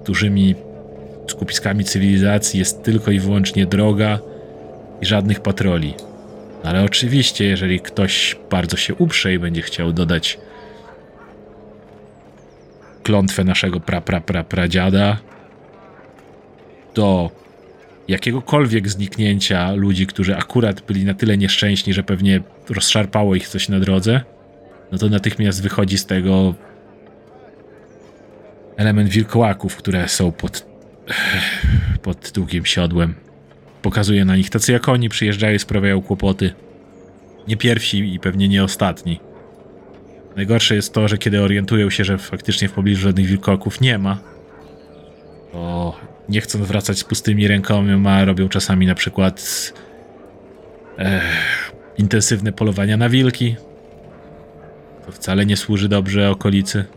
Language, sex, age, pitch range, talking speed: Polish, male, 40-59, 90-105 Hz, 115 wpm